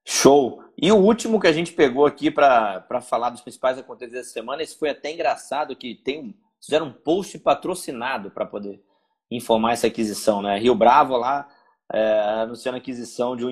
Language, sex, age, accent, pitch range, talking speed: Portuguese, male, 20-39, Brazilian, 115-140 Hz, 180 wpm